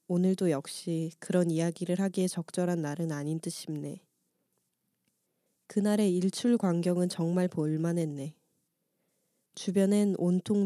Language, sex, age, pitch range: Korean, female, 20-39, 165-200 Hz